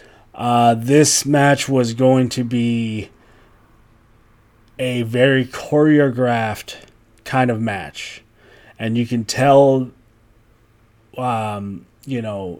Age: 30-49